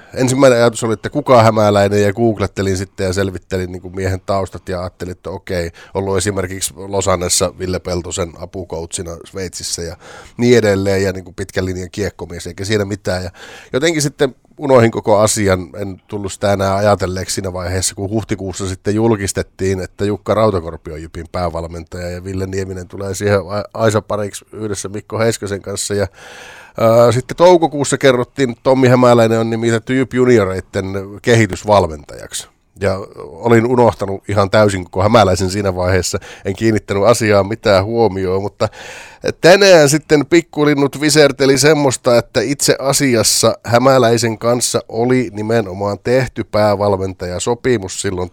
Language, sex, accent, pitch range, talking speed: Finnish, male, native, 95-115 Hz, 135 wpm